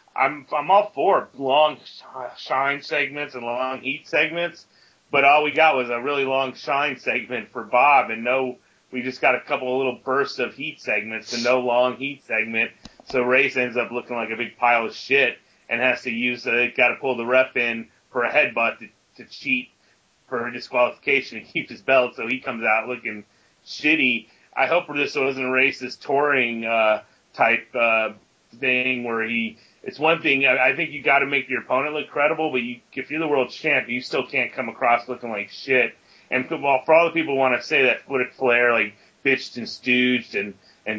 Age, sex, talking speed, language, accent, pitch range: 30-49, male, 205 wpm, English, American, 115-135 Hz